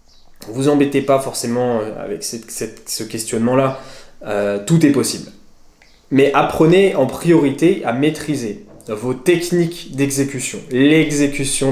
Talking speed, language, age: 100 wpm, French, 20-39